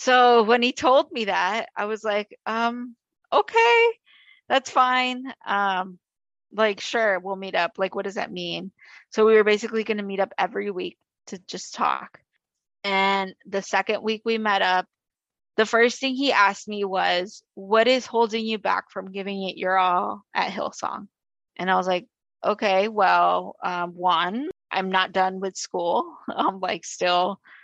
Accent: American